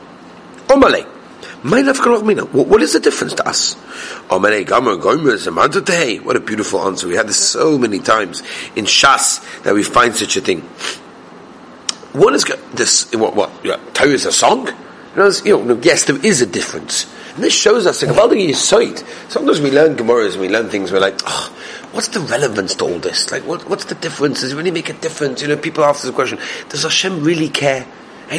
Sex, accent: male, British